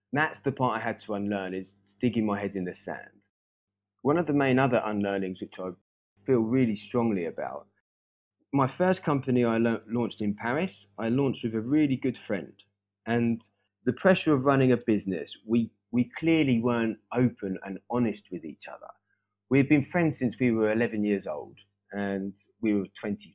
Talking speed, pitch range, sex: 180 wpm, 100-130 Hz, male